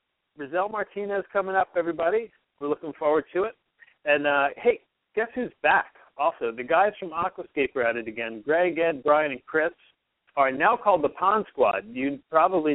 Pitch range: 130-170 Hz